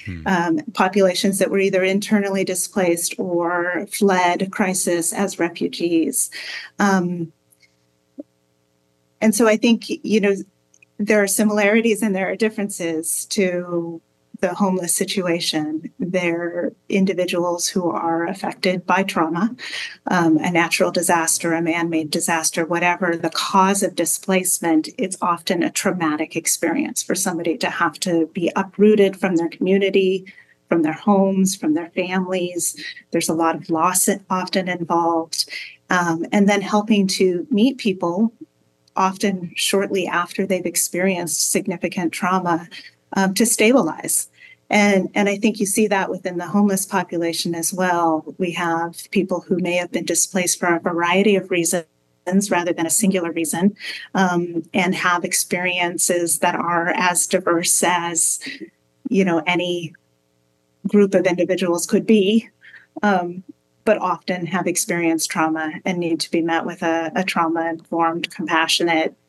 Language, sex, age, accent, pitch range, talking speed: English, female, 30-49, American, 170-195 Hz, 135 wpm